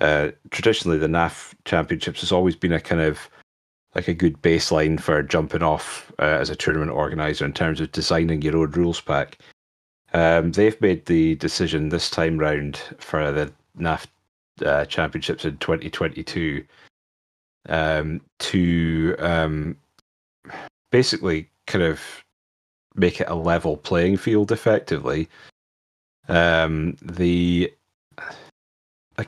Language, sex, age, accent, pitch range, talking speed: English, male, 30-49, British, 75-85 Hz, 125 wpm